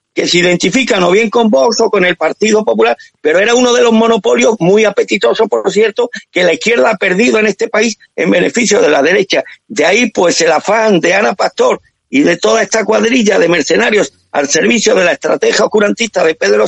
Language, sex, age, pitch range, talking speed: Spanish, male, 50-69, 190-235 Hz, 210 wpm